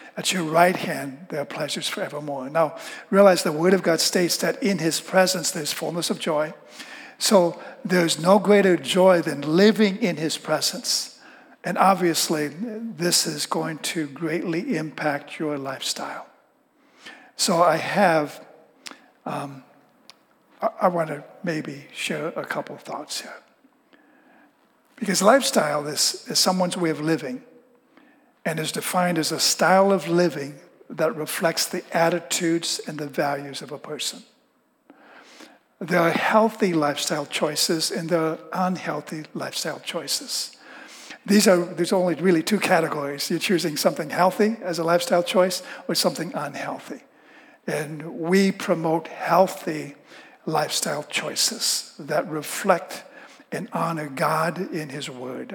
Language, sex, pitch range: English, male, 160-210 Hz